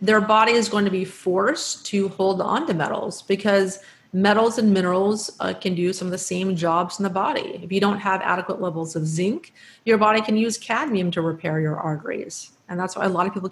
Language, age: English, 30-49